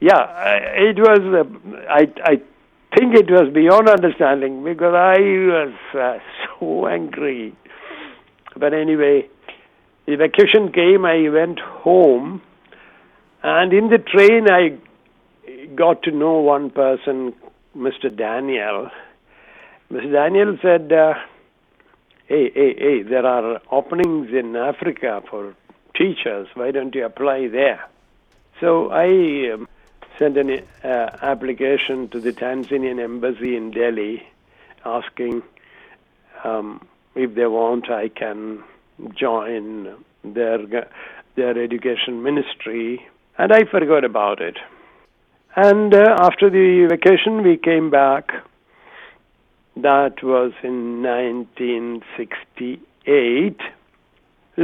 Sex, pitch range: male, 125-185 Hz